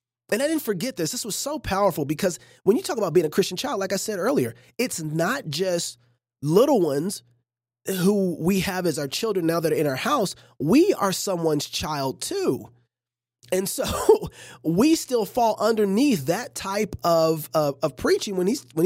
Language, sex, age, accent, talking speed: English, male, 30-49, American, 190 wpm